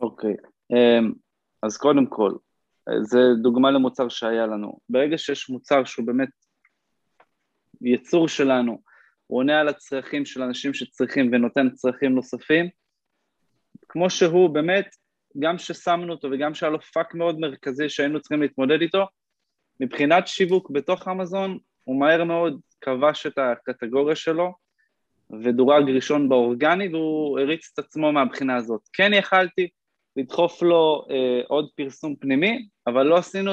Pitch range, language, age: 130-175 Hz, Hebrew, 20-39